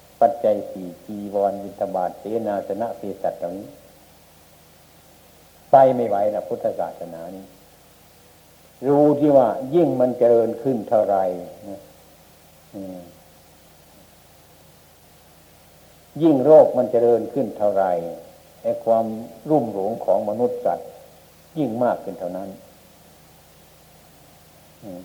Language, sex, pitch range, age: Thai, male, 90-125 Hz, 60-79